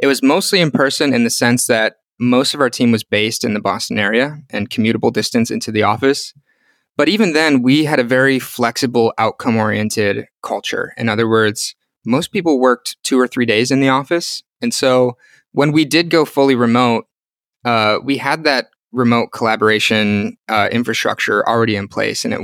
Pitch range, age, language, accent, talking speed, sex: 115-140 Hz, 20-39, English, American, 185 wpm, male